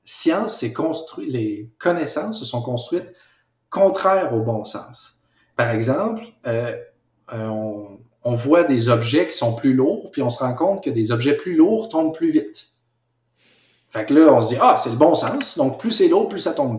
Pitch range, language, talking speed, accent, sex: 115-190 Hz, French, 200 wpm, Canadian, male